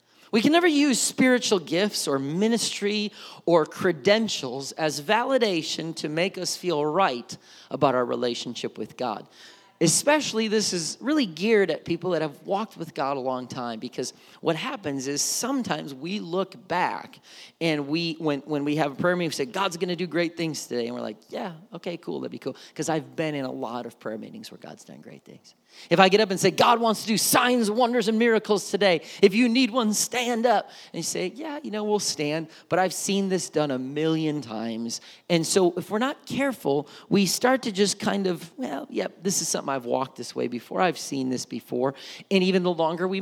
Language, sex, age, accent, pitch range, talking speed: English, male, 40-59, American, 140-205 Hz, 215 wpm